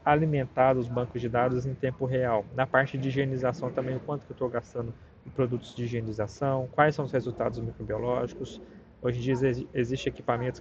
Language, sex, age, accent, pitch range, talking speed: Portuguese, male, 20-39, Brazilian, 120-140 Hz, 190 wpm